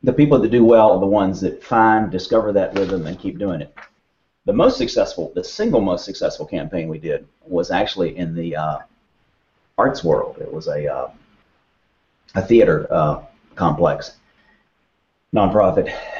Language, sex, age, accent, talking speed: English, male, 40-59, American, 160 wpm